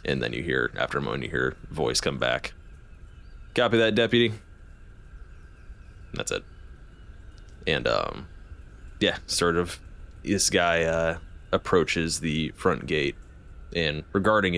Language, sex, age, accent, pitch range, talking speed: English, male, 20-39, American, 75-105 Hz, 135 wpm